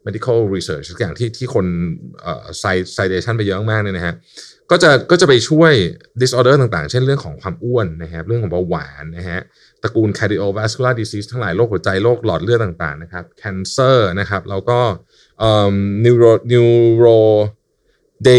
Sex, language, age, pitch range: male, Thai, 20-39, 90-120 Hz